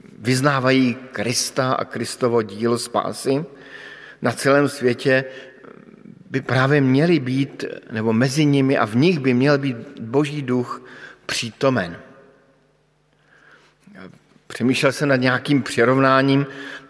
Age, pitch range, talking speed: 50-69, 115-140 Hz, 105 wpm